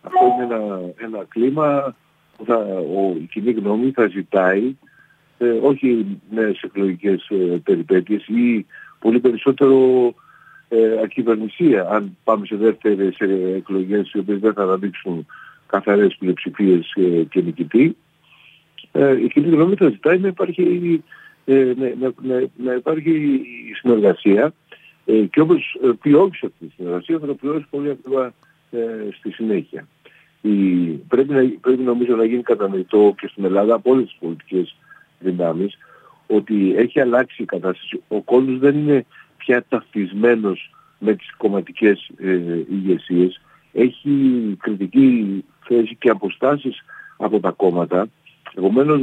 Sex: male